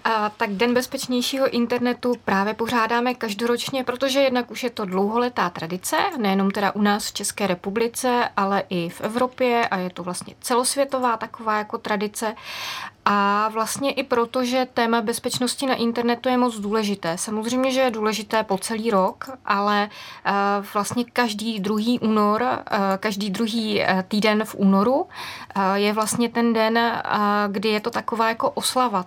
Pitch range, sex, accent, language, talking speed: 205-240 Hz, female, native, Czech, 150 wpm